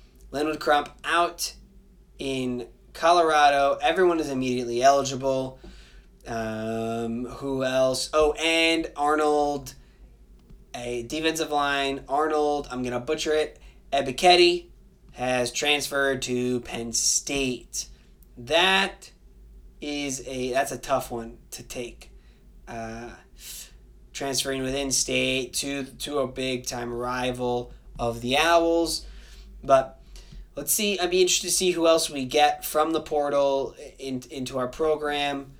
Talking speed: 120 wpm